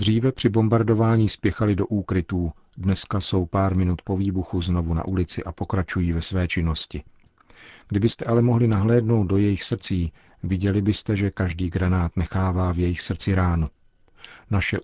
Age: 40-59